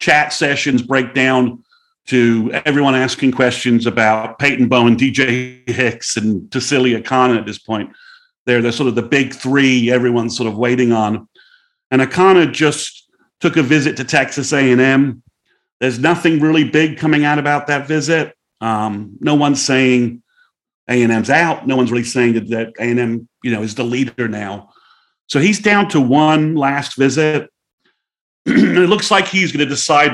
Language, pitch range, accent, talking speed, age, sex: English, 120-155 Hz, American, 155 wpm, 40-59, male